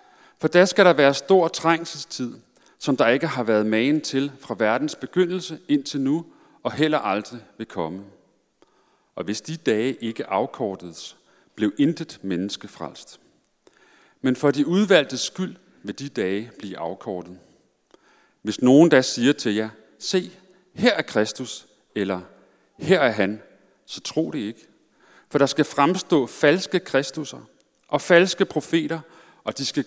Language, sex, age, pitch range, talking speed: Danish, male, 40-59, 110-165 Hz, 150 wpm